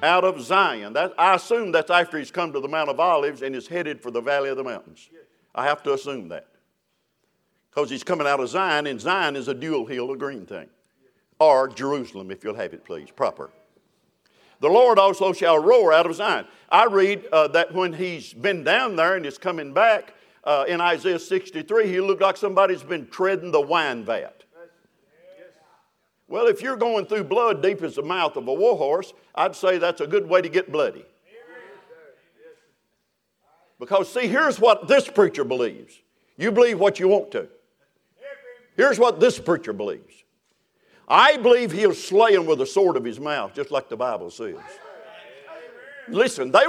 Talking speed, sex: 185 wpm, male